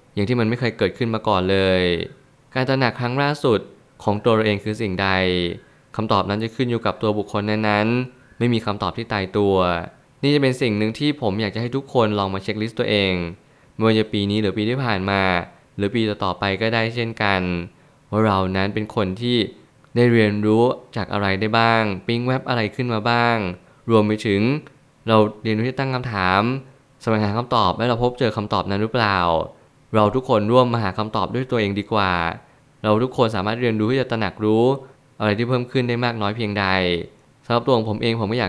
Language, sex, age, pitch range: Thai, male, 20-39, 100-120 Hz